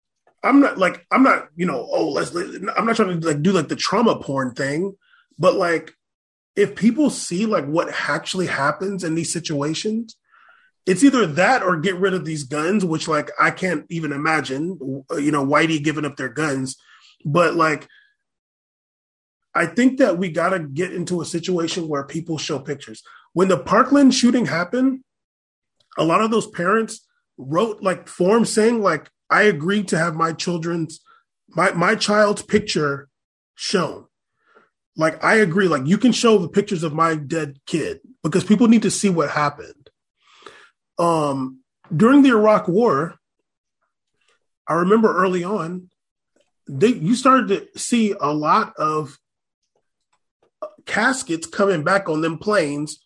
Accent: American